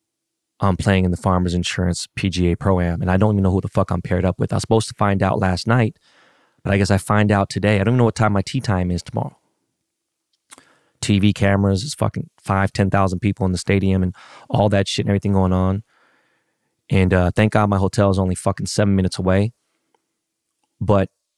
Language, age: English, 20-39